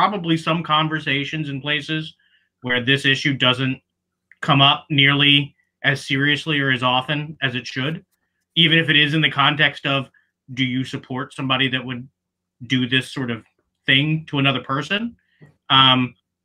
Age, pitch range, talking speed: 30-49, 130-165 Hz, 155 wpm